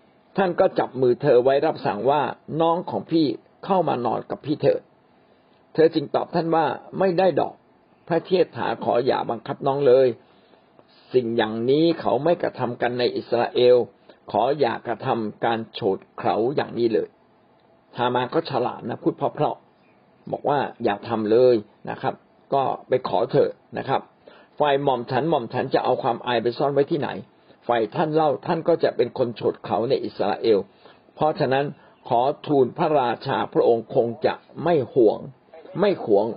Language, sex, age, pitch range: Thai, male, 60-79, 120-160 Hz